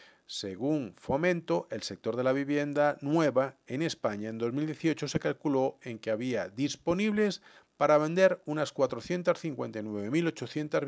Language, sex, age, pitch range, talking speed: Spanish, male, 50-69, 125-170 Hz, 120 wpm